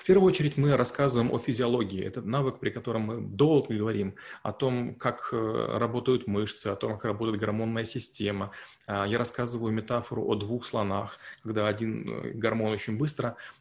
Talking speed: 160 wpm